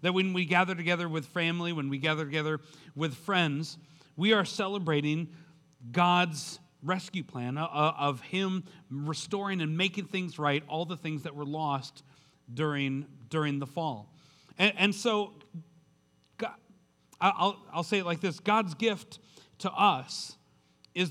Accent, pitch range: American, 155-180 Hz